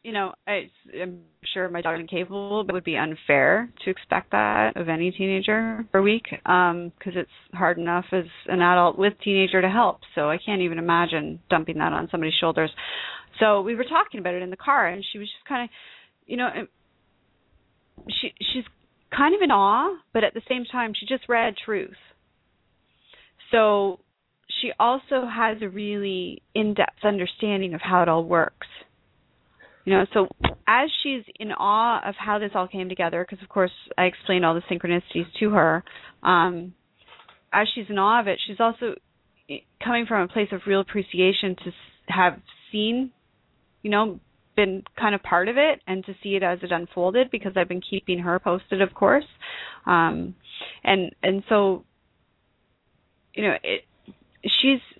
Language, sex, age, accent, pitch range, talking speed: English, female, 30-49, American, 180-220 Hz, 175 wpm